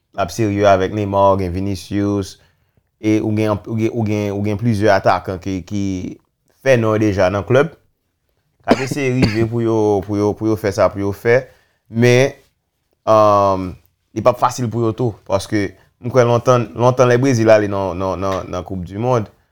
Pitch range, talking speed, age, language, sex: 95-115 Hz, 150 wpm, 30-49, French, male